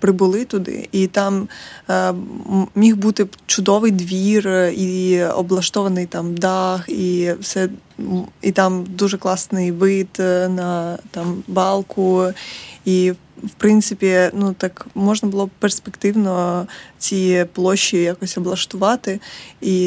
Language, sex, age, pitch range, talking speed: Ukrainian, female, 20-39, 185-215 Hz, 110 wpm